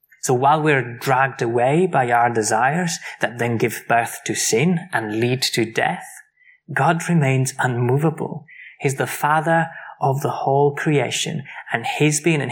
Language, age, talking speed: English, 20-39, 155 wpm